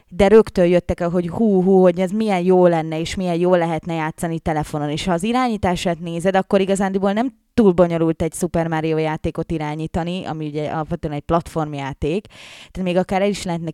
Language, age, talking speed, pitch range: Hungarian, 20-39, 190 wpm, 170-205 Hz